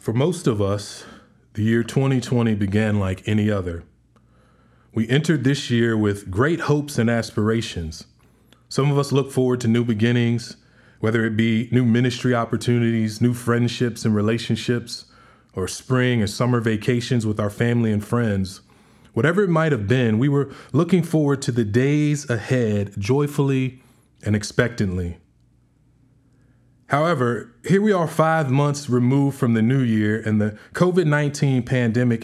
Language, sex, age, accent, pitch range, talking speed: English, male, 20-39, American, 110-145 Hz, 145 wpm